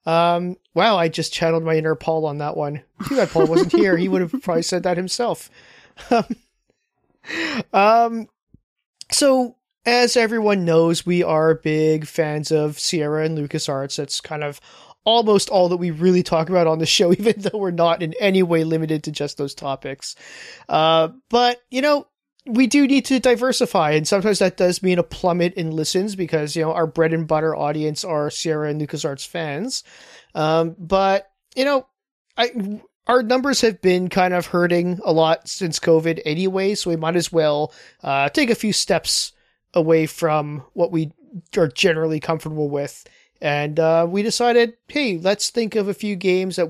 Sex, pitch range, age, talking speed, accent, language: male, 160-210 Hz, 30-49, 175 wpm, American, English